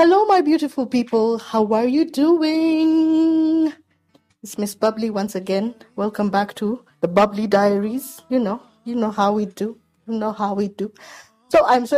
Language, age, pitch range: English, 20-39, 180-225 Hz